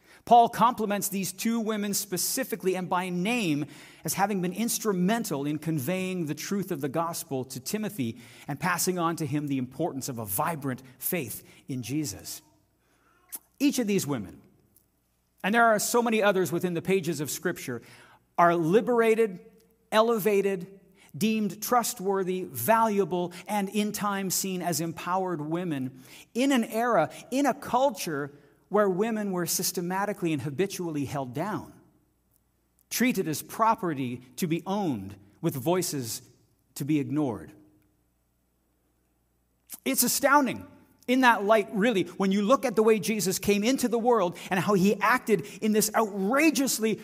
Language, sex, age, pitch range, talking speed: English, male, 40-59, 150-220 Hz, 145 wpm